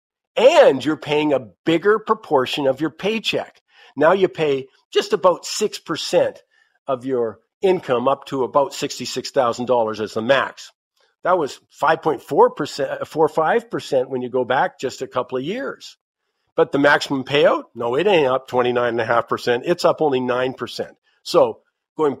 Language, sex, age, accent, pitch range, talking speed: English, male, 50-69, American, 130-155 Hz, 155 wpm